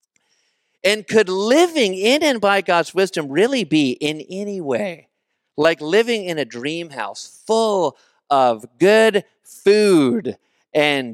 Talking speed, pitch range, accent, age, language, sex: 130 wpm, 120-190 Hz, American, 40-59, English, male